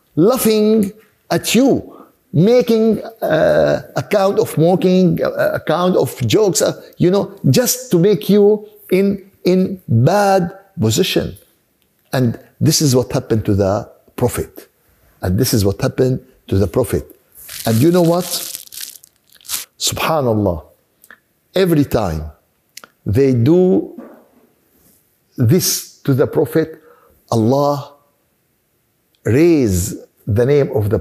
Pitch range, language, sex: 125-190 Hz, Arabic, male